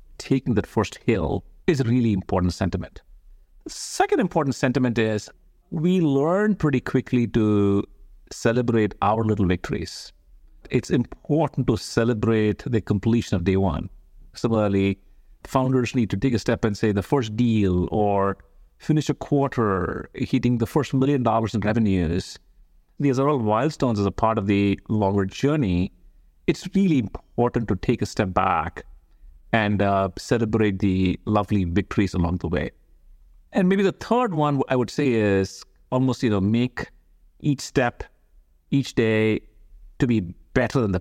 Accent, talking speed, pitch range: Indian, 150 wpm, 95-125 Hz